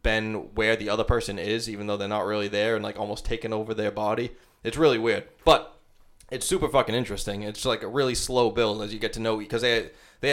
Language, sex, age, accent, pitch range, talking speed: English, male, 20-39, American, 105-115 Hz, 240 wpm